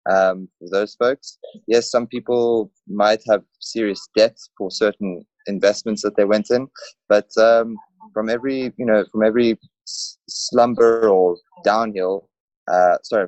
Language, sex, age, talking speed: English, male, 20-39, 135 wpm